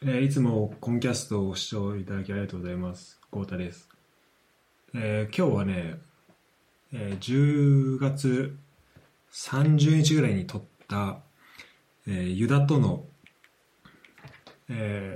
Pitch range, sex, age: 95-140 Hz, male, 20-39